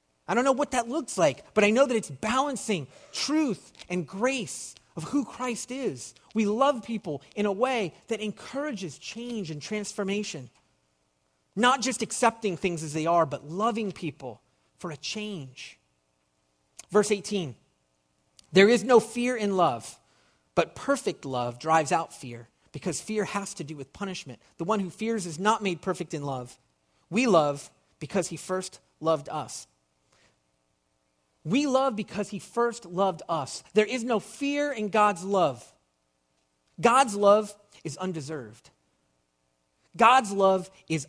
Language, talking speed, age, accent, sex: English, 150 wpm, 30-49, American, male